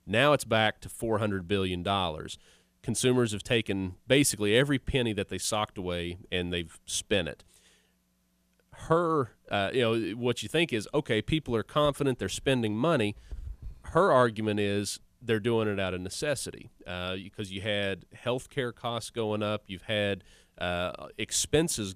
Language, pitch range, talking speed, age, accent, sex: English, 95-120 Hz, 155 wpm, 30-49, American, male